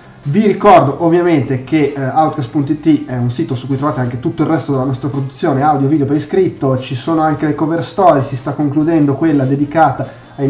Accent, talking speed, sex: native, 195 wpm, male